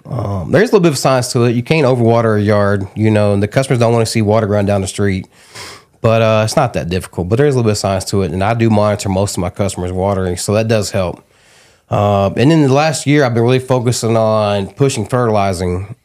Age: 30-49